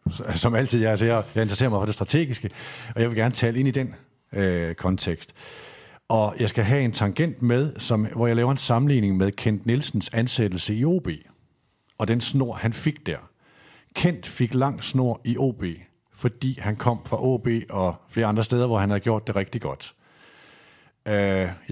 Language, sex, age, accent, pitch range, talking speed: Danish, male, 50-69, native, 100-125 Hz, 190 wpm